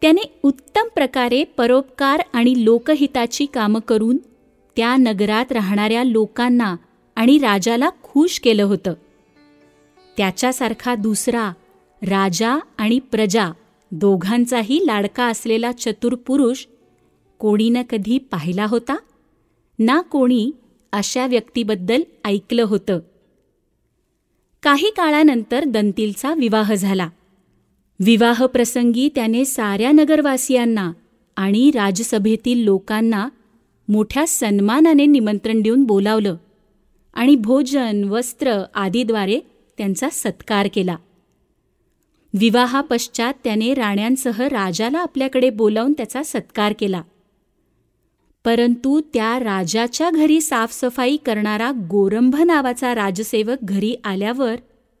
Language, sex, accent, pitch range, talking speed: Marathi, female, native, 210-260 Hz, 90 wpm